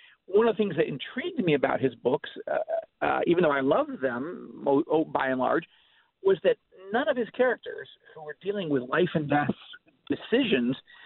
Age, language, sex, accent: 50-69, English, male, American